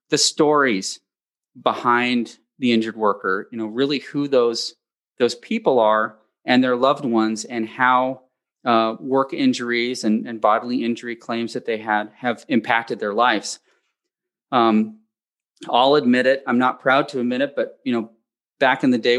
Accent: American